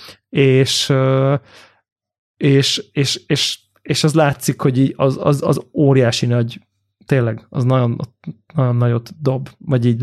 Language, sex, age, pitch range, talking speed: Hungarian, male, 20-39, 120-135 Hz, 125 wpm